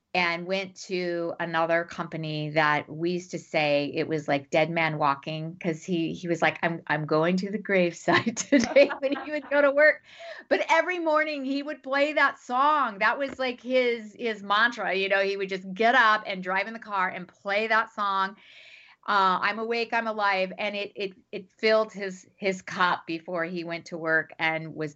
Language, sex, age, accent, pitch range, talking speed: English, female, 40-59, American, 175-270 Hz, 200 wpm